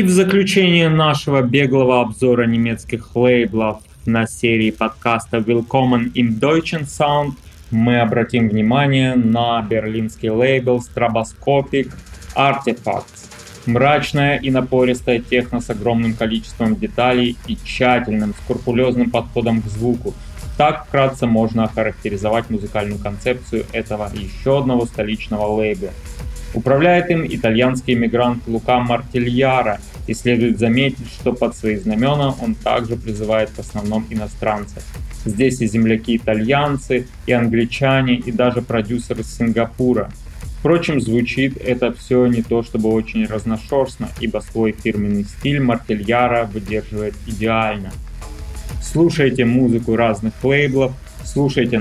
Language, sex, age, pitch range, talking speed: Russian, male, 20-39, 110-130 Hz, 115 wpm